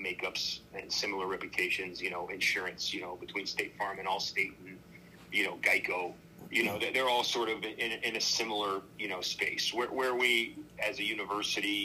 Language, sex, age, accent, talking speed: English, male, 40-59, American, 195 wpm